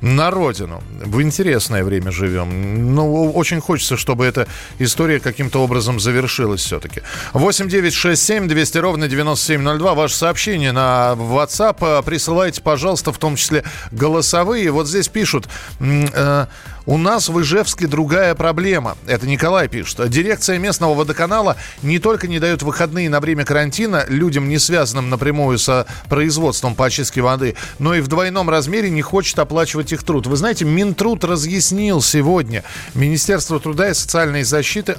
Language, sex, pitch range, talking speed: Russian, male, 130-175 Hz, 140 wpm